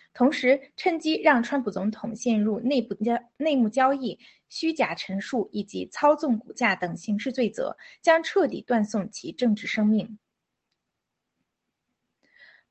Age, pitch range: 20-39, 215-290 Hz